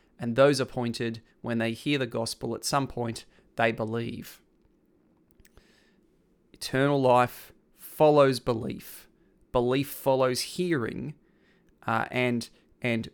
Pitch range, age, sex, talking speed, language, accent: 115-135 Hz, 30-49, male, 105 wpm, English, Australian